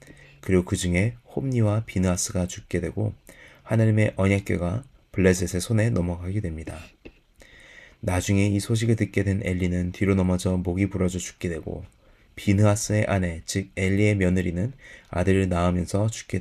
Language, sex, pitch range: Korean, male, 90-105 Hz